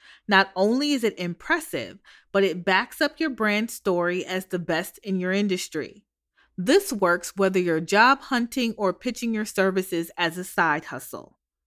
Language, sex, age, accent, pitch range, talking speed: English, female, 30-49, American, 185-245 Hz, 165 wpm